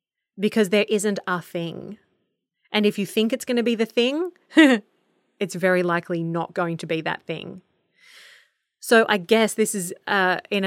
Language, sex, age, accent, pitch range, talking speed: English, female, 30-49, Australian, 180-215 Hz, 175 wpm